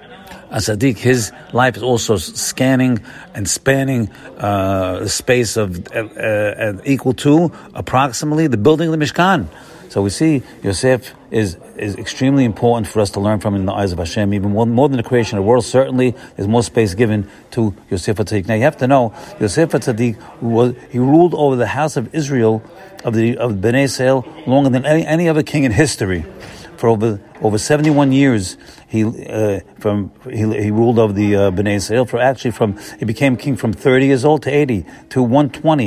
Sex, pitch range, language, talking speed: male, 105-135 Hz, English, 185 wpm